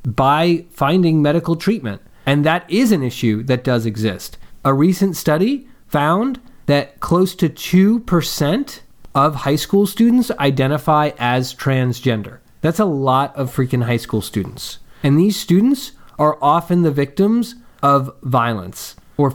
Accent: American